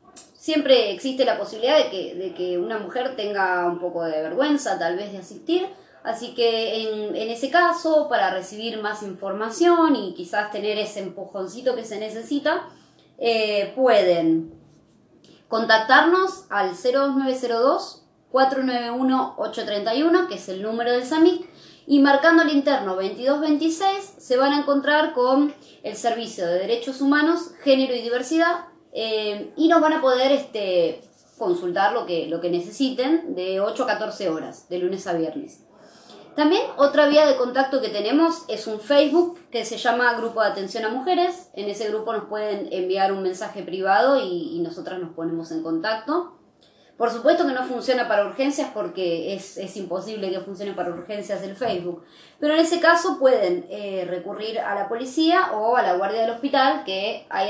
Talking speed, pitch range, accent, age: 160 wpm, 195-290 Hz, Argentinian, 20-39